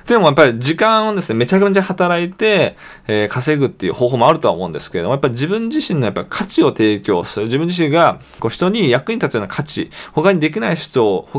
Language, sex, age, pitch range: Japanese, male, 20-39, 115-180 Hz